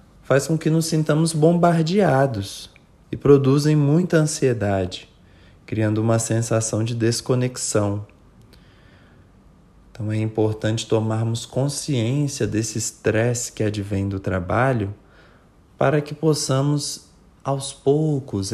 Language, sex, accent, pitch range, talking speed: English, male, Brazilian, 105-145 Hz, 100 wpm